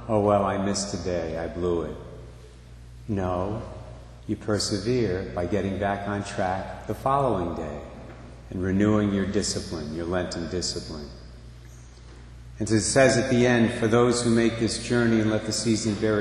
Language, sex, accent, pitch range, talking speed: English, male, American, 90-115 Hz, 160 wpm